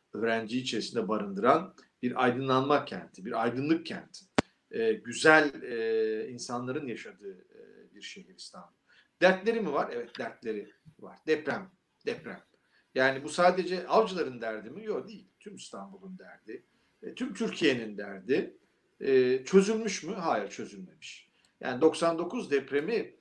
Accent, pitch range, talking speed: native, 130-215 Hz, 125 wpm